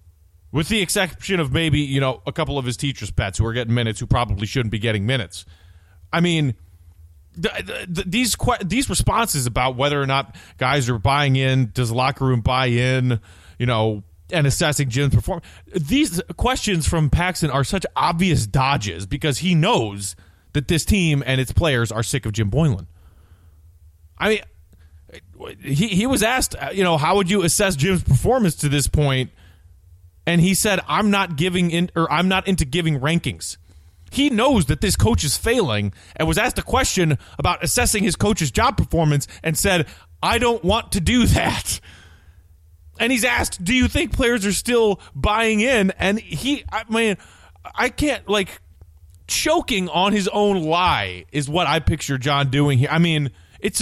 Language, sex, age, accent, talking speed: English, male, 30-49, American, 180 wpm